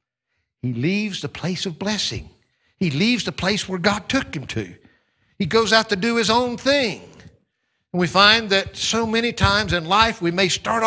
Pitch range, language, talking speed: 150-210 Hz, English, 195 wpm